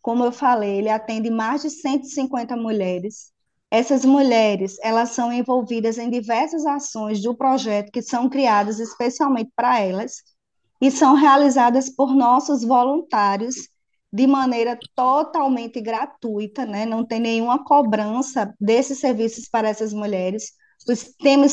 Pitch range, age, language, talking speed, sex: 220-260 Hz, 20-39, Portuguese, 130 wpm, female